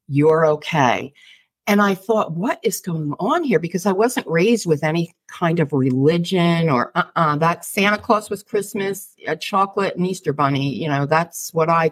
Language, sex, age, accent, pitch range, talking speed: English, female, 50-69, American, 150-195 Hz, 180 wpm